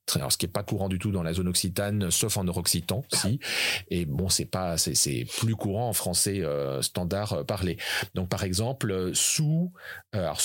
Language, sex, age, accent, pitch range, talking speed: French, male, 40-59, French, 85-110 Hz, 200 wpm